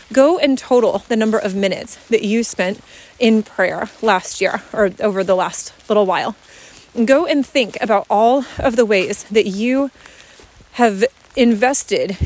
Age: 30-49